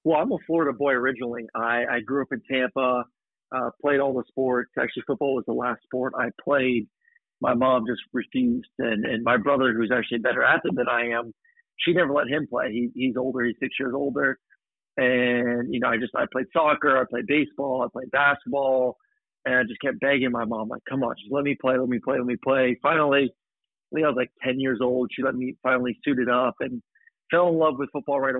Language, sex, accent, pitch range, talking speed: English, male, American, 125-145 Hz, 230 wpm